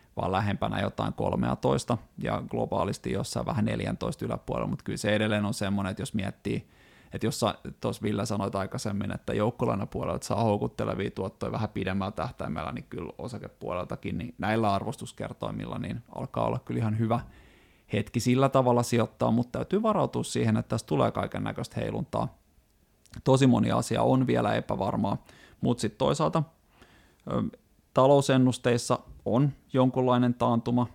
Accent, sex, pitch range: native, male, 110-125 Hz